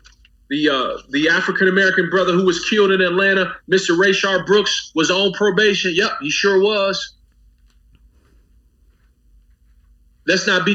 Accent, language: American, English